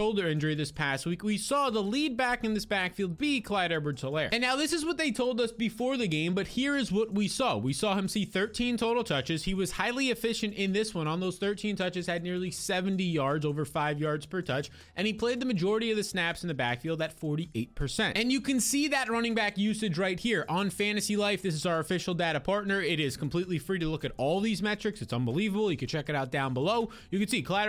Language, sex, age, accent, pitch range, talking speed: English, male, 20-39, American, 170-220 Hz, 250 wpm